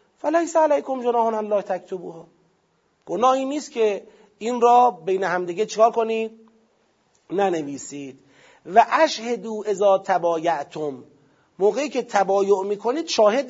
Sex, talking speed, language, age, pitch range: male, 120 wpm, Persian, 40-59, 170-230 Hz